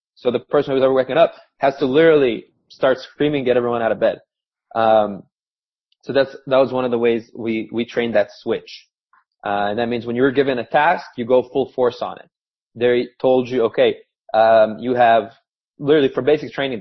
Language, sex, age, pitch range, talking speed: English, male, 20-39, 120-145 Hz, 205 wpm